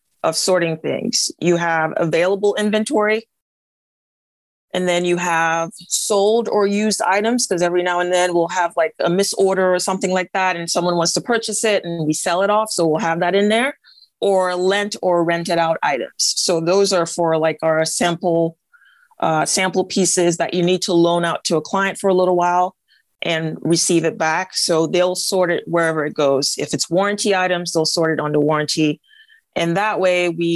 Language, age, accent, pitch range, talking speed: English, 30-49, American, 165-195 Hz, 195 wpm